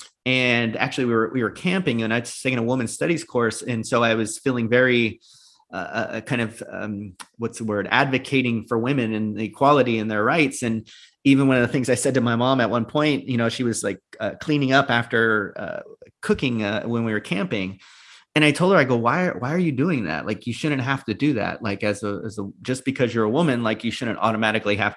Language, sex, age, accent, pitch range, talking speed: English, male, 30-49, American, 105-130 Hz, 240 wpm